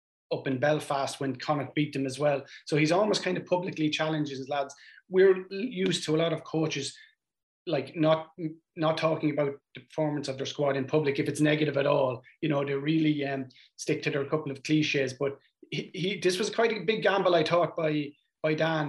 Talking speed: 215 wpm